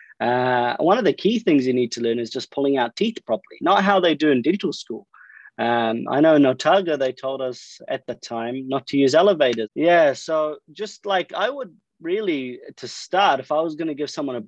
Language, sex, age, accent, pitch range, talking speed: English, male, 30-49, Australian, 130-195 Hz, 230 wpm